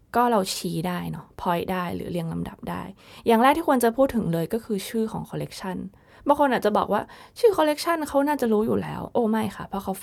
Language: Thai